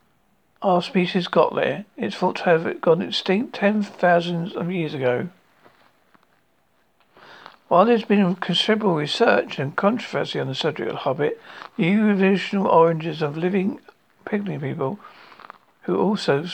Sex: male